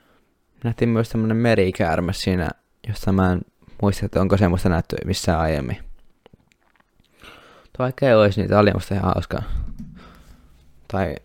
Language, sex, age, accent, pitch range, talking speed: Finnish, male, 20-39, native, 90-105 Hz, 130 wpm